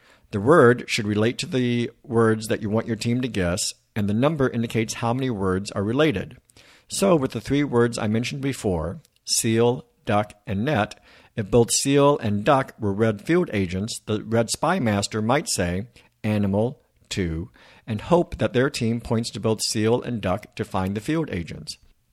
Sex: male